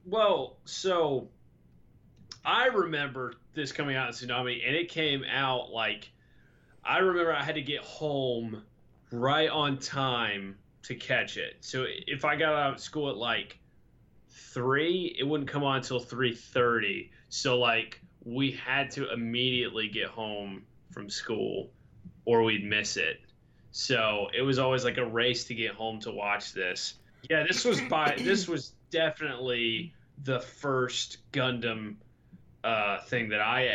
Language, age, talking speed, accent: English, 20-39, 150 wpm, American